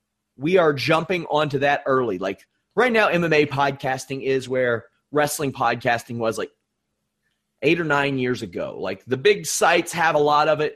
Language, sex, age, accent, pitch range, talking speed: English, male, 30-49, American, 125-155 Hz, 175 wpm